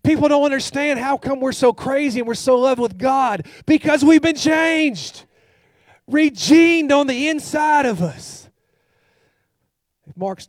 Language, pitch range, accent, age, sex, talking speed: English, 170-240 Hz, American, 40-59, male, 145 wpm